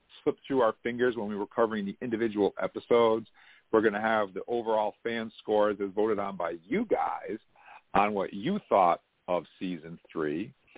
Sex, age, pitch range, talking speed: male, 50-69, 105-140 Hz, 180 wpm